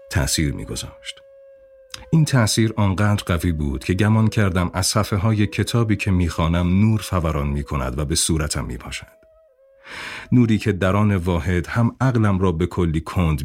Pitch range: 80-110 Hz